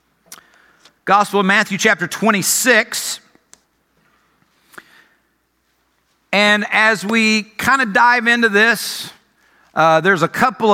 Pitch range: 165-220 Hz